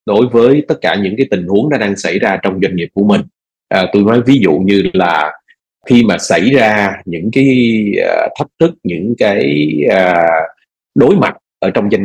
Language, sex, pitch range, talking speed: Vietnamese, male, 100-140 Hz, 185 wpm